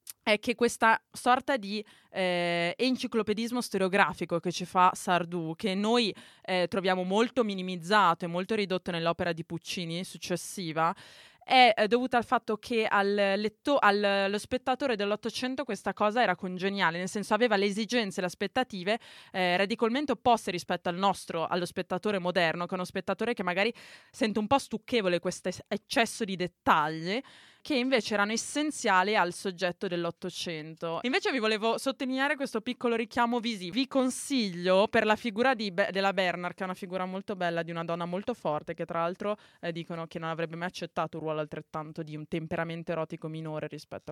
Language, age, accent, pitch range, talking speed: Italian, 20-39, native, 170-225 Hz, 165 wpm